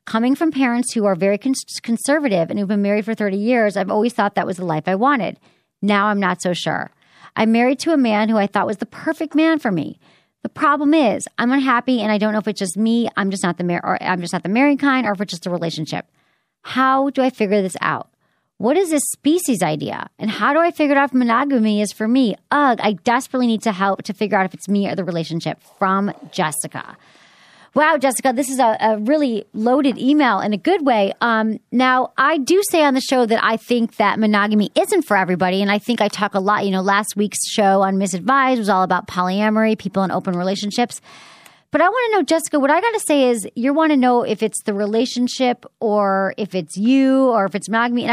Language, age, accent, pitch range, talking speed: English, 40-59, American, 195-265 Hz, 235 wpm